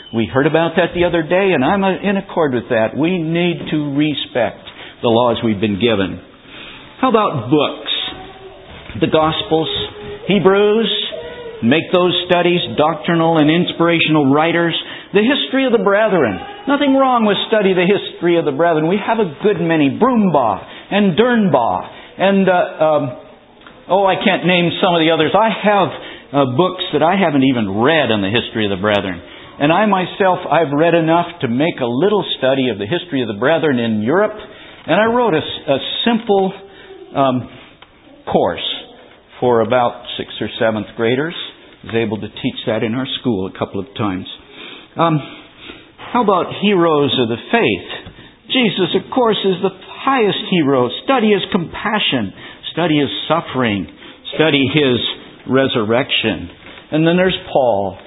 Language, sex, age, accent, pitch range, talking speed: English, male, 50-69, American, 130-195 Hz, 160 wpm